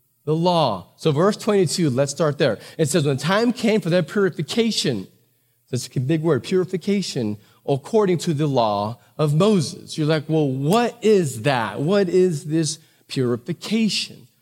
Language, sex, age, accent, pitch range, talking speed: English, male, 30-49, American, 130-160 Hz, 160 wpm